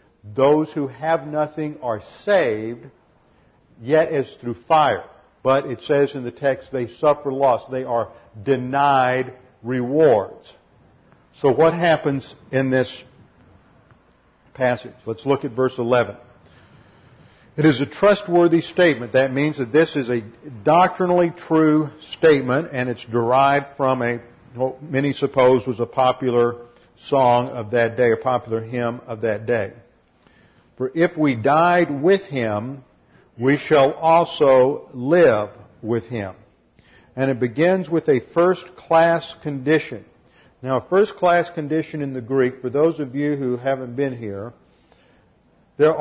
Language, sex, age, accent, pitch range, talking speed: English, male, 50-69, American, 120-155 Hz, 135 wpm